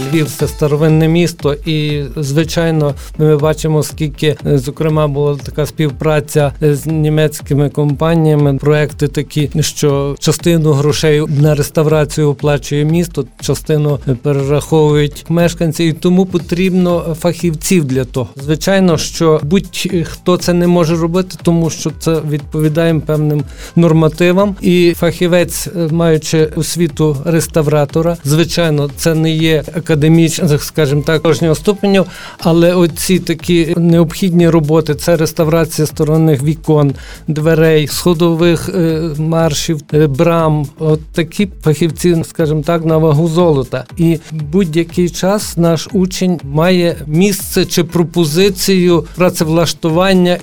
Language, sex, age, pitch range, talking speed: Ukrainian, male, 50-69, 150-170 Hz, 110 wpm